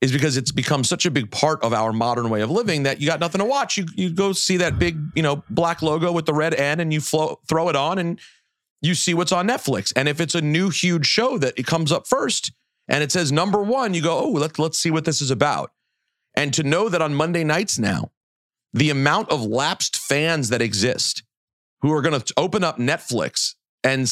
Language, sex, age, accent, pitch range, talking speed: English, male, 40-59, American, 130-170 Hz, 235 wpm